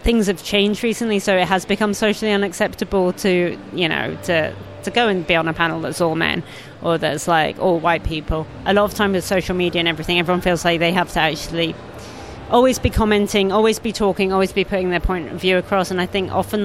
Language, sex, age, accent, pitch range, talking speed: English, female, 30-49, British, 165-195 Hz, 230 wpm